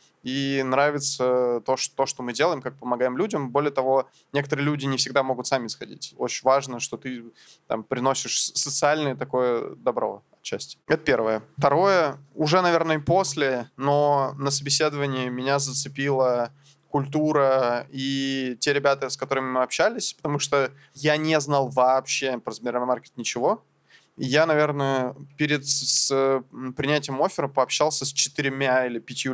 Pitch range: 125-150 Hz